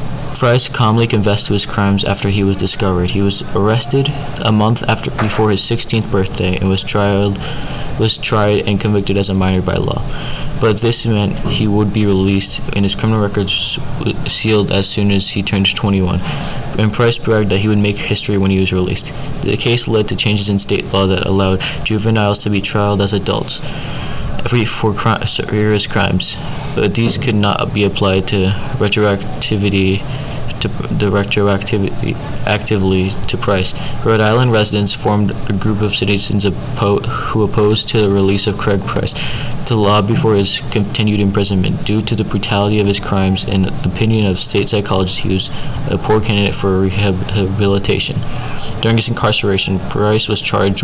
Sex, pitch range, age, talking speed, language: male, 100-110 Hz, 20-39, 170 wpm, English